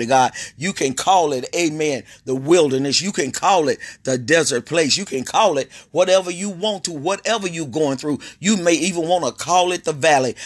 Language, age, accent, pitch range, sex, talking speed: English, 30-49, American, 130-165 Hz, male, 205 wpm